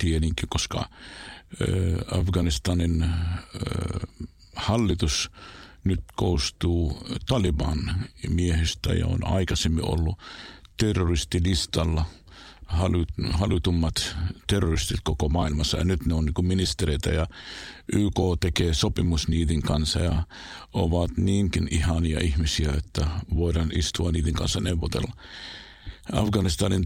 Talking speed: 100 wpm